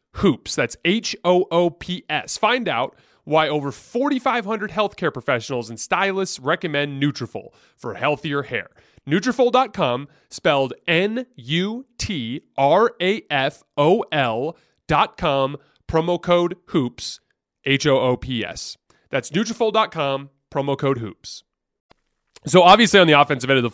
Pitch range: 120-150 Hz